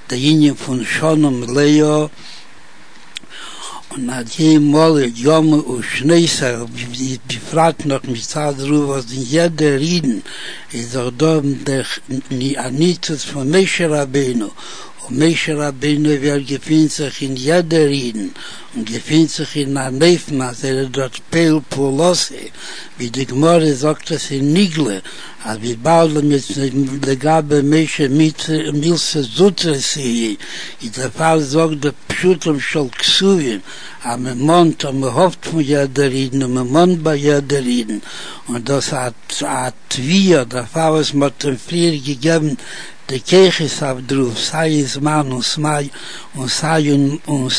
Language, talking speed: Hebrew, 95 wpm